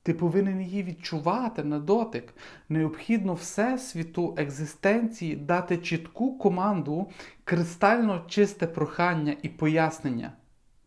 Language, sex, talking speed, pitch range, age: Ukrainian, male, 100 wpm, 145-190 Hz, 40-59